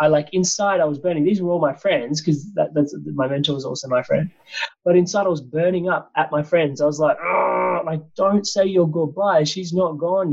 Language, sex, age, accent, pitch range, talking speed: English, male, 20-39, Australian, 130-165 Hz, 230 wpm